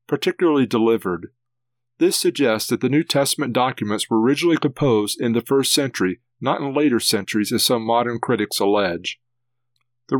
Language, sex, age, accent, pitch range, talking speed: English, male, 40-59, American, 115-145 Hz, 155 wpm